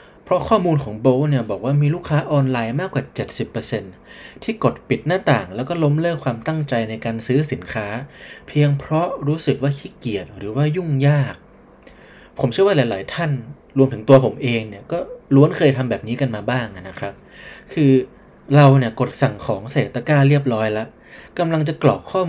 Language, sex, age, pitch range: Thai, male, 20-39, 115-145 Hz